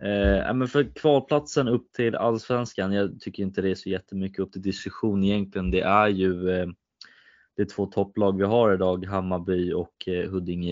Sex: male